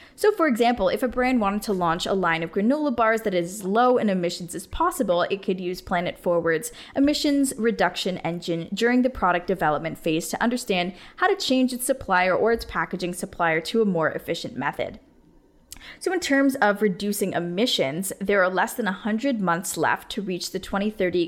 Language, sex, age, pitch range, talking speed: English, female, 10-29, 175-225 Hz, 190 wpm